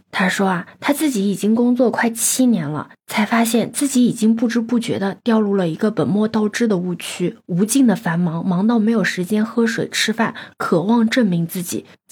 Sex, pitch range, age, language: female, 190-250 Hz, 20-39, Chinese